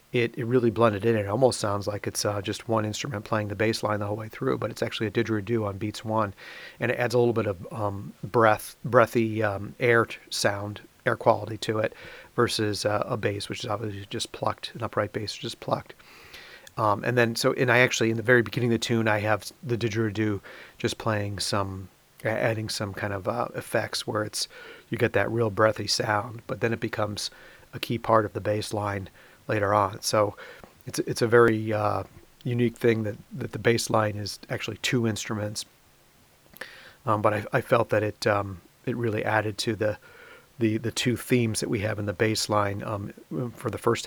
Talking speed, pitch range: 210 wpm, 105-115 Hz